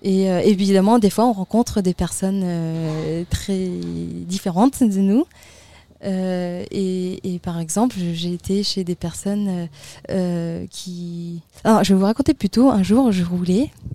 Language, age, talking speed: French, 20-39, 155 wpm